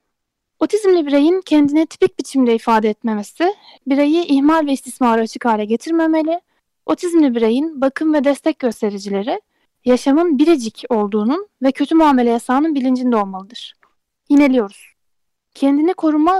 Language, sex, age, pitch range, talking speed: Turkish, female, 10-29, 245-320 Hz, 115 wpm